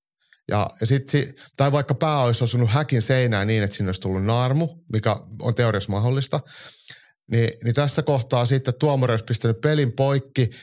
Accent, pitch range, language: native, 110-135 Hz, Finnish